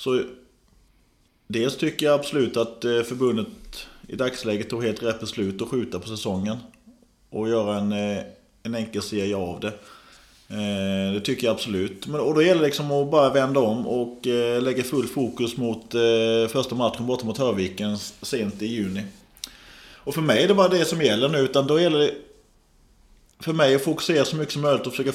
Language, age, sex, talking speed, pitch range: Swedish, 30-49, male, 170 wpm, 110-140 Hz